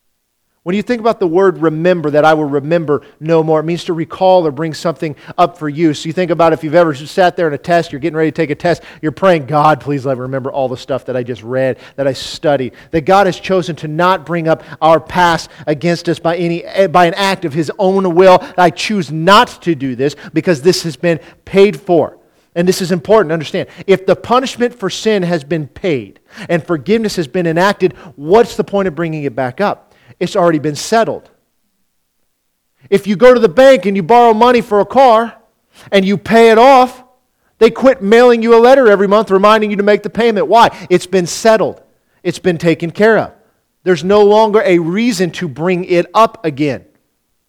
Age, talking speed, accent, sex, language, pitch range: 40-59, 220 wpm, American, male, English, 160-205 Hz